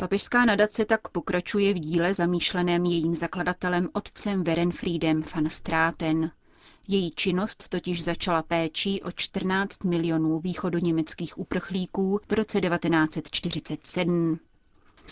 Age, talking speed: 30-49, 105 wpm